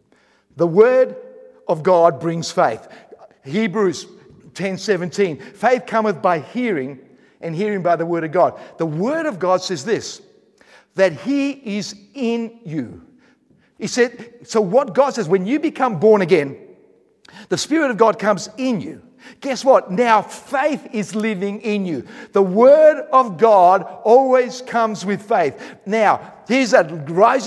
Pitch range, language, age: 195-255 Hz, English, 50-69